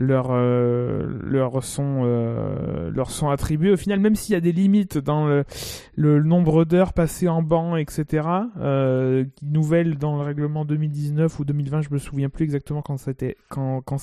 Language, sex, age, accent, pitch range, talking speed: French, male, 20-39, French, 145-170 Hz, 180 wpm